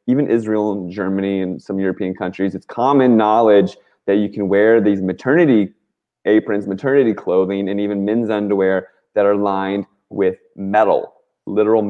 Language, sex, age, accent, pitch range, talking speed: English, male, 20-39, American, 90-105 Hz, 150 wpm